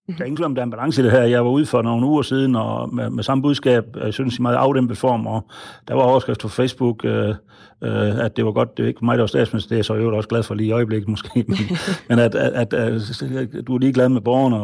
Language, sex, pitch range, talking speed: Danish, male, 110-130 Hz, 290 wpm